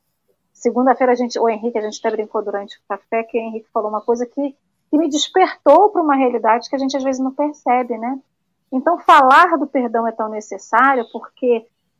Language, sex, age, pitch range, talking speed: Portuguese, female, 40-59, 235-290 Hz, 205 wpm